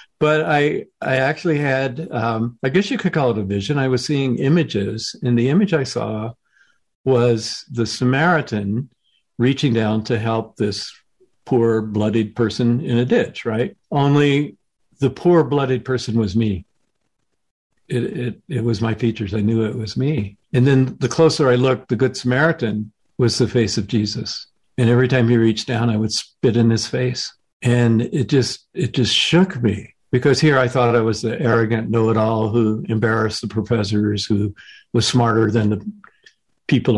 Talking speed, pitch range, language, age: 170 wpm, 110-130 Hz, English, 50-69